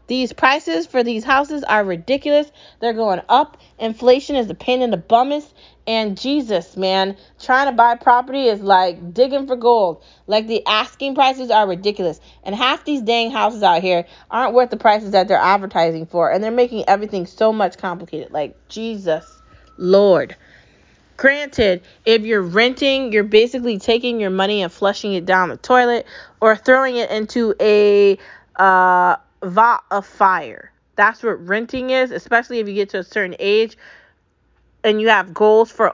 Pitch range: 195-245 Hz